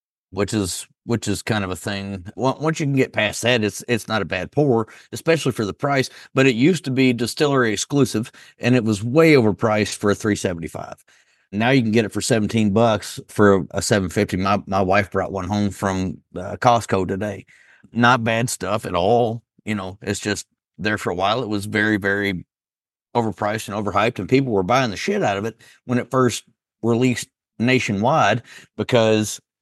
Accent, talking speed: American, 200 wpm